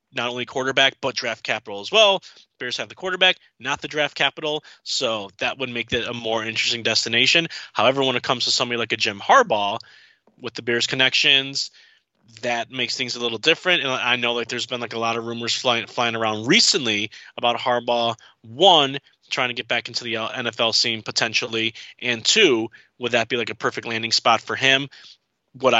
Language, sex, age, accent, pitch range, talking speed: English, male, 20-39, American, 120-155 Hz, 200 wpm